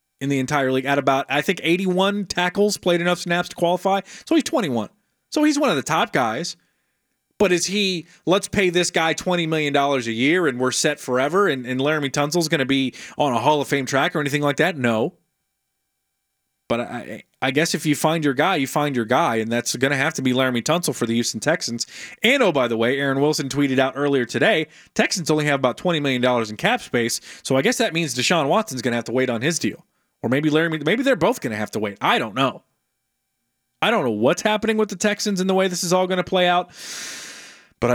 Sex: male